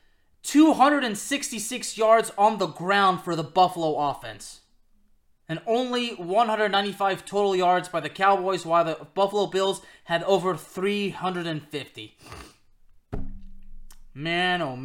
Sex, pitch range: male, 180-250 Hz